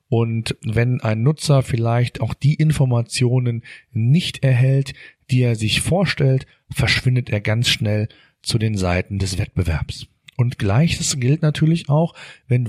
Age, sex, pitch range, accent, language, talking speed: 40-59, male, 115-140 Hz, German, German, 135 wpm